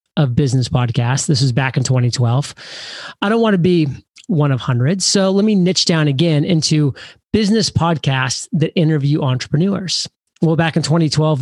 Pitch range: 135-170 Hz